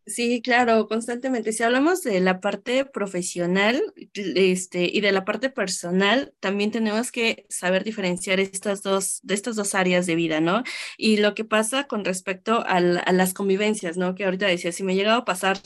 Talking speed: 190 wpm